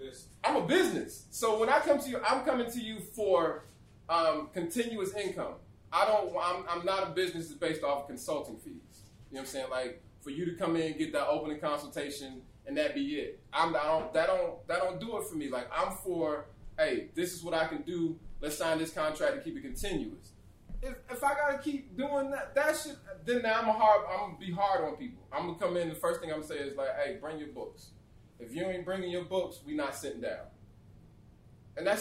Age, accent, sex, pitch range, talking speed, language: 20-39, American, male, 150-240 Hz, 240 wpm, English